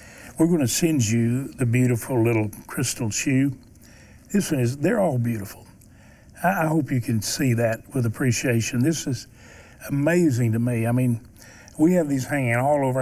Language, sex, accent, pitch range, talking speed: English, male, American, 115-135 Hz, 165 wpm